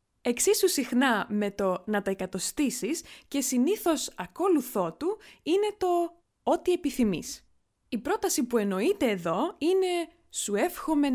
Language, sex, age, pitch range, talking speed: Greek, female, 20-39, 205-330 Hz, 125 wpm